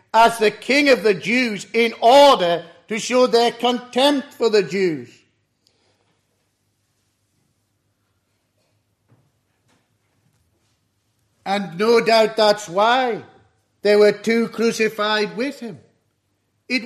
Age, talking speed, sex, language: 50-69, 95 wpm, male, English